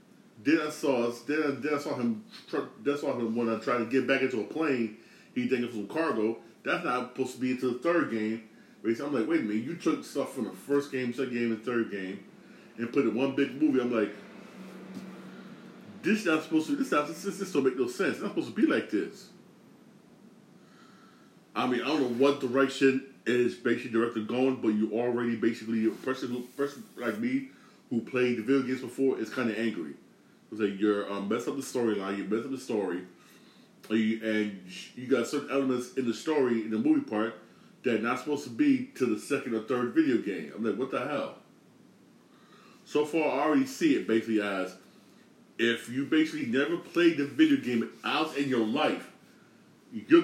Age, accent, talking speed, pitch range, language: 30-49, American, 215 wpm, 115-160 Hz, English